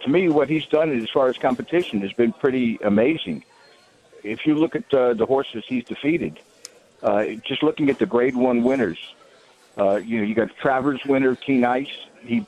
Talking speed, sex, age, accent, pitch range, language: 195 wpm, male, 60-79, American, 110-130 Hz, English